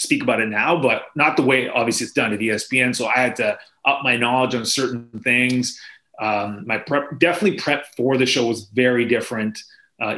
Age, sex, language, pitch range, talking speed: 30-49, male, English, 115-130 Hz, 205 wpm